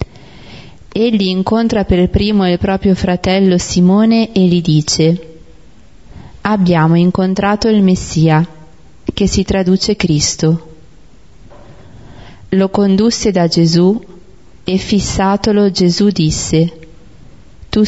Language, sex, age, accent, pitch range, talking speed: Italian, female, 30-49, native, 160-195 Hz, 95 wpm